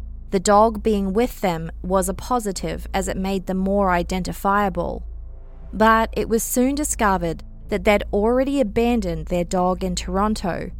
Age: 20-39